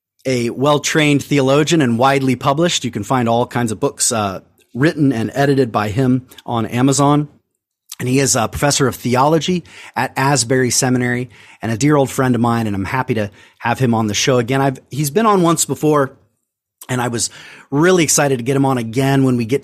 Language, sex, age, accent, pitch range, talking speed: English, male, 30-49, American, 115-145 Hz, 205 wpm